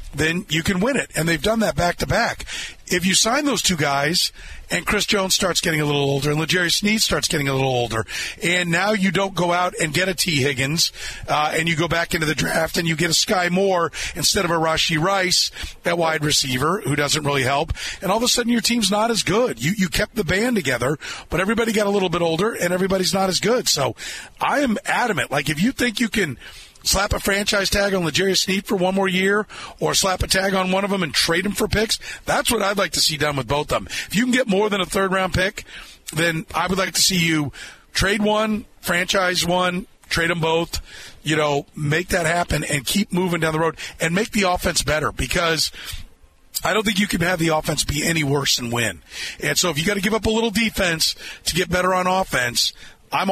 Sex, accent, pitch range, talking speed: male, American, 155-200 Hz, 240 wpm